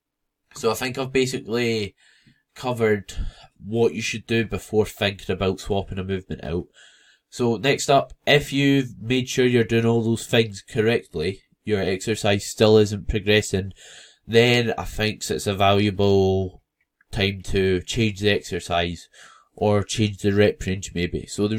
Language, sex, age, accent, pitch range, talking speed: English, male, 10-29, British, 100-115 Hz, 150 wpm